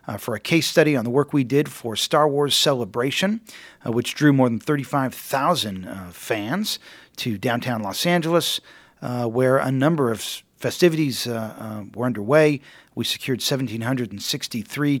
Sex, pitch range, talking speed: male, 115-145 Hz, 150 wpm